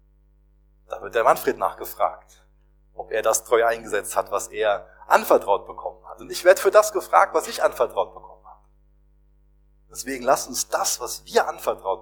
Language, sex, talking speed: German, male, 170 wpm